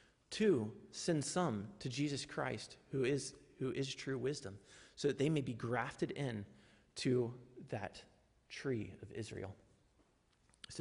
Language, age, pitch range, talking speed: English, 30-49, 110-135 Hz, 140 wpm